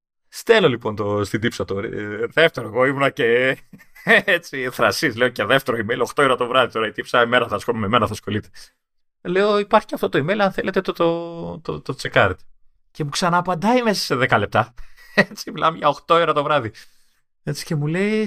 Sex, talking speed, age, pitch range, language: male, 200 wpm, 30-49, 125-195 Hz, Greek